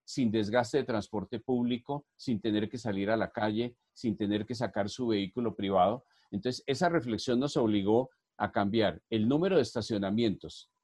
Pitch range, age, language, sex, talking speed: 105-140 Hz, 40-59, Spanish, male, 165 wpm